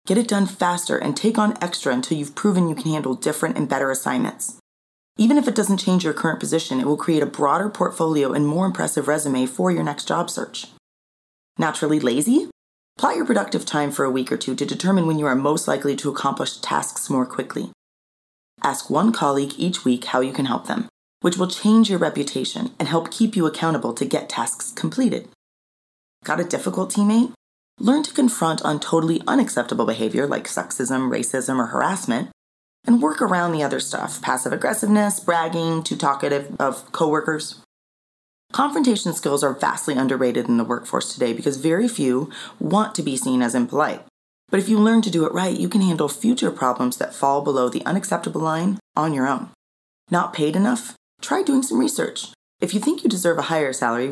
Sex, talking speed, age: female, 190 wpm, 30-49